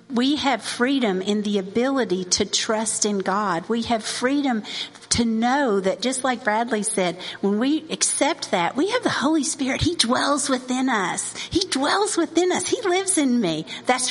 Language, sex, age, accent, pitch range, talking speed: English, female, 50-69, American, 190-255 Hz, 180 wpm